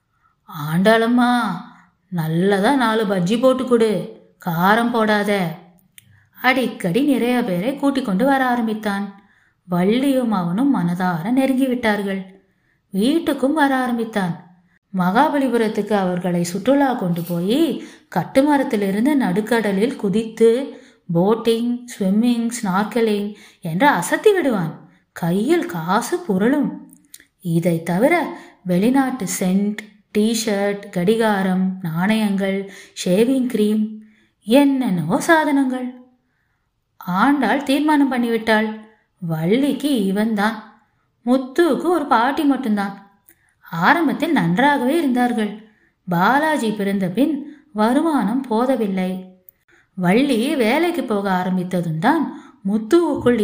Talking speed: 75 wpm